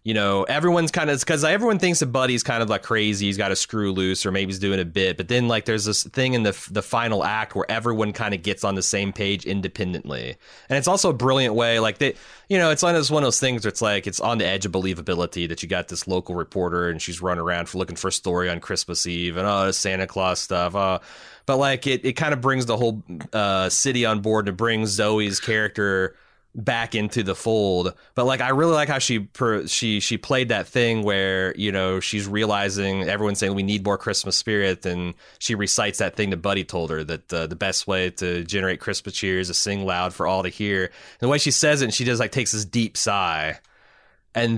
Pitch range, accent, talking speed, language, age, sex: 95-120 Hz, American, 245 wpm, English, 30-49, male